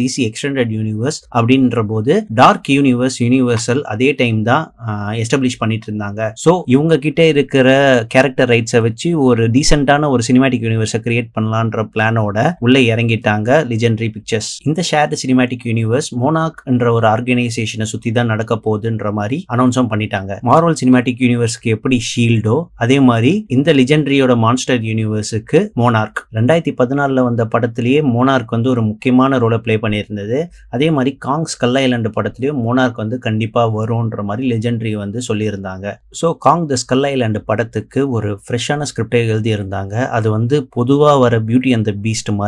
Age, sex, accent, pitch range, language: 30-49, male, native, 110-130 Hz, Tamil